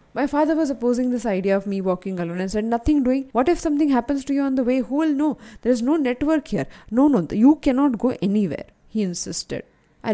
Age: 20-39